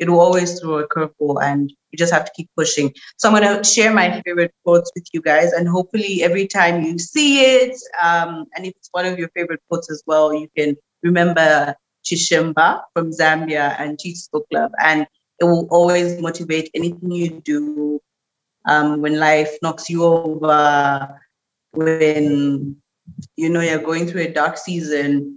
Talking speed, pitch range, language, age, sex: 175 wpm, 155-180 Hz, English, 30-49, female